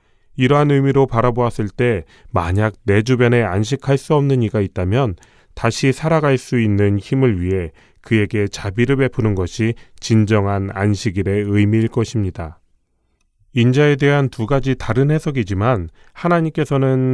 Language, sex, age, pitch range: Korean, male, 30-49, 100-130 Hz